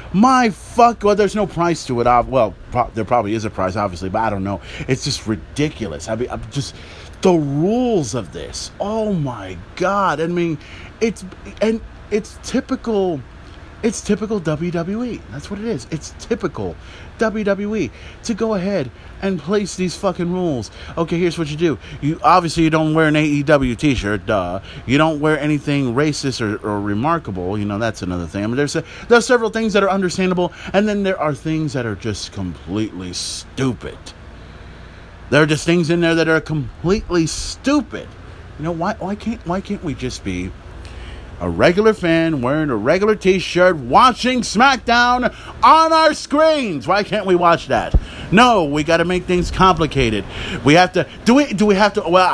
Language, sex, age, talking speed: English, male, 30-49, 185 wpm